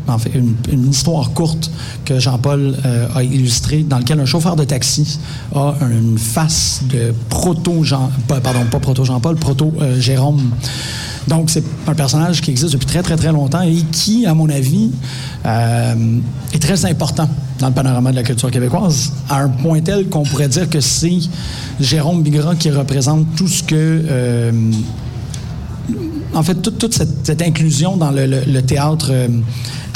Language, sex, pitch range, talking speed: French, male, 125-155 Hz, 170 wpm